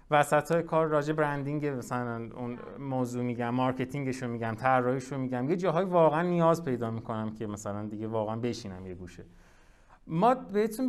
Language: Persian